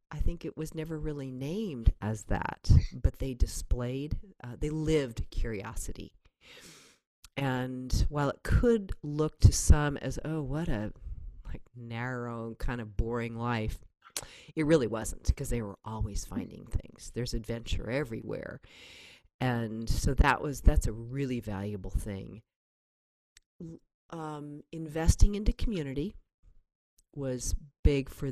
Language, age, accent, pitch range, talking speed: English, 40-59, American, 110-150 Hz, 130 wpm